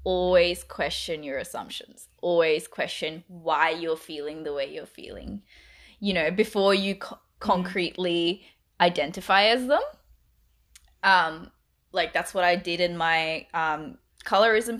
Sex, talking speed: female, 125 wpm